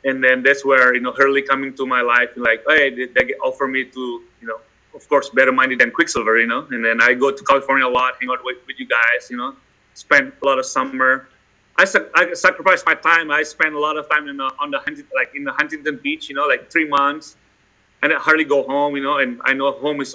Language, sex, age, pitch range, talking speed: English, male, 30-49, 130-150 Hz, 260 wpm